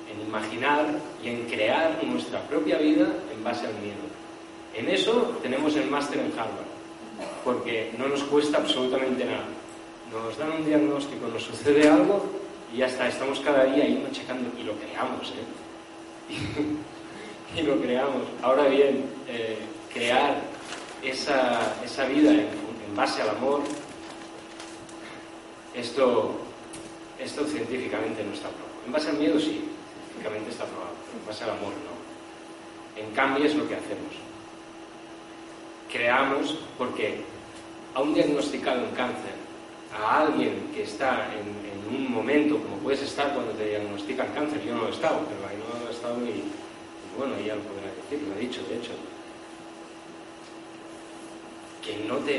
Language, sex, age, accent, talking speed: Spanish, male, 30-49, Spanish, 150 wpm